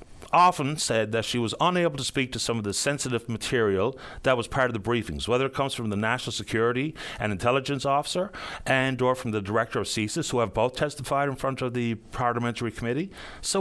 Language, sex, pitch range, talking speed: English, male, 110-165 Hz, 210 wpm